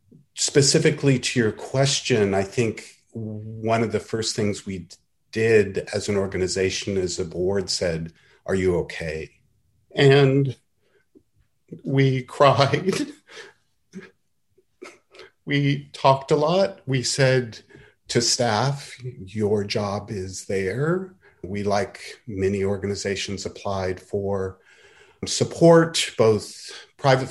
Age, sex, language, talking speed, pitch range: 50-69, male, English, 105 wpm, 95-125 Hz